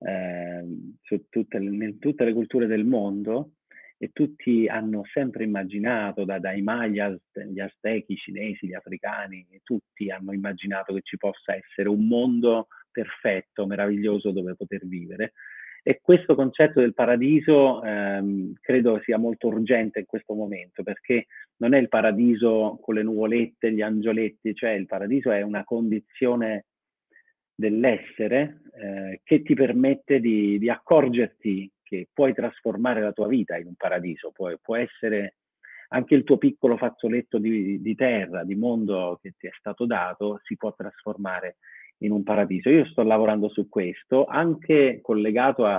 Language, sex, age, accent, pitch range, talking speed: Italian, male, 30-49, native, 100-120 Hz, 150 wpm